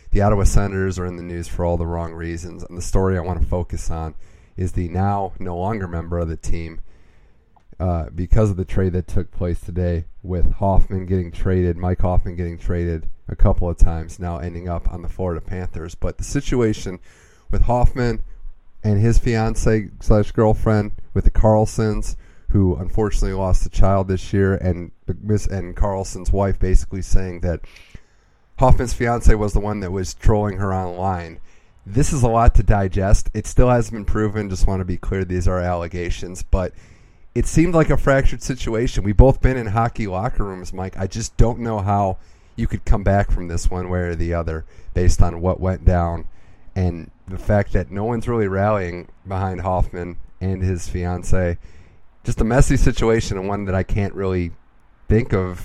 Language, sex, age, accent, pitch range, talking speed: English, male, 30-49, American, 90-105 Hz, 190 wpm